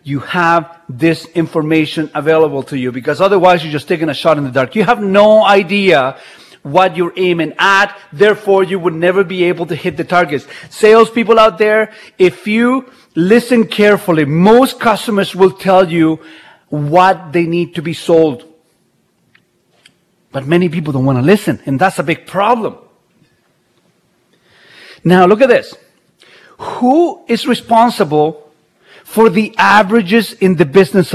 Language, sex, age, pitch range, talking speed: English, male, 40-59, 155-200 Hz, 150 wpm